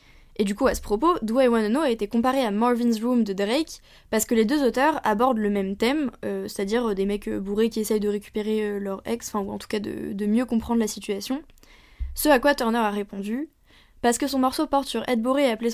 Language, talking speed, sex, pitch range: French, 245 wpm, female, 210-260 Hz